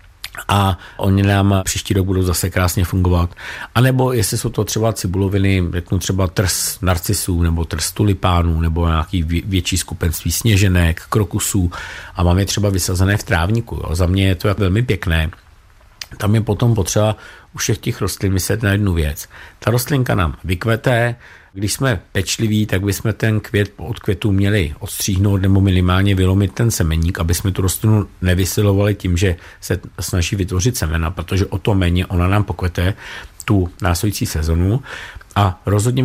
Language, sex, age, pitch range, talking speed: Czech, male, 50-69, 90-105 Hz, 165 wpm